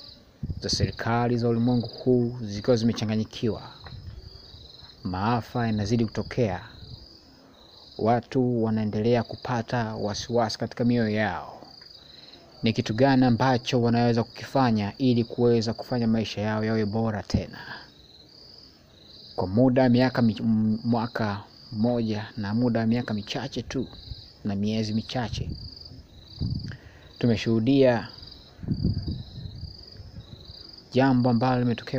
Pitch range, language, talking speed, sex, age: 105-125 Hz, Swahili, 95 wpm, male, 30-49